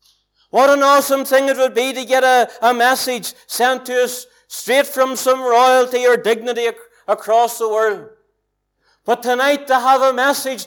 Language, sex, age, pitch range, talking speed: English, male, 60-79, 245-270 Hz, 170 wpm